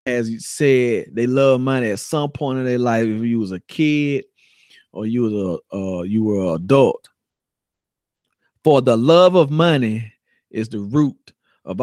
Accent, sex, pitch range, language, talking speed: American, male, 105-135 Hz, English, 180 wpm